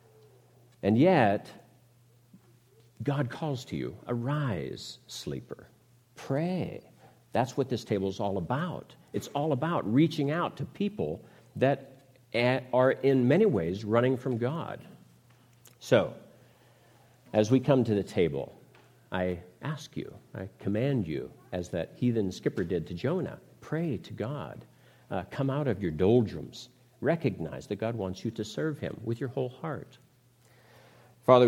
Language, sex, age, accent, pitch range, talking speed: English, male, 50-69, American, 95-125 Hz, 140 wpm